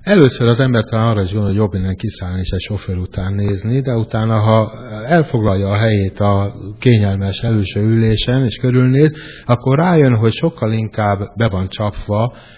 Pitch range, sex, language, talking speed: 95-115 Hz, male, Hungarian, 165 wpm